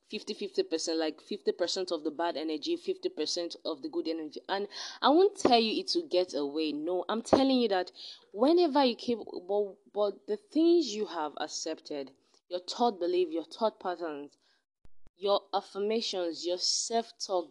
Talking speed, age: 170 wpm, 20-39